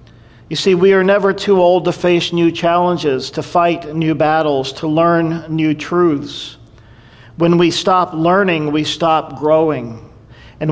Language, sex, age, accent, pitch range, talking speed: English, male, 50-69, American, 140-165 Hz, 150 wpm